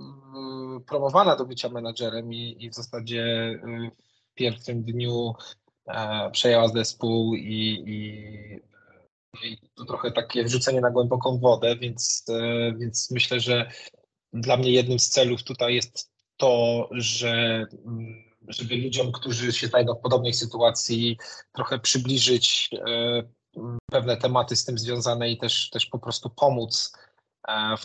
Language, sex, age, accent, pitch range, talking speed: Polish, male, 20-39, native, 115-125 Hz, 125 wpm